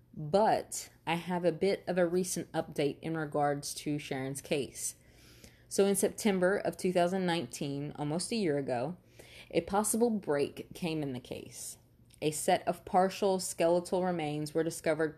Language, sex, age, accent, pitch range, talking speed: English, female, 20-39, American, 150-180 Hz, 150 wpm